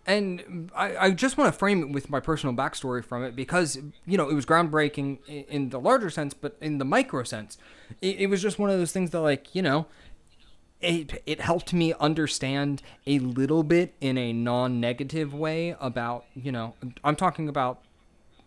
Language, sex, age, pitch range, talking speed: English, male, 30-49, 120-155 Hz, 195 wpm